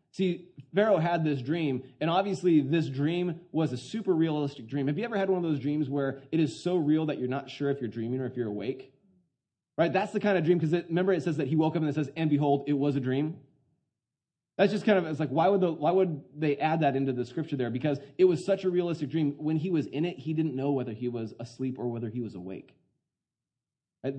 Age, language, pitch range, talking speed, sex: 20-39, English, 140-175 Hz, 260 wpm, male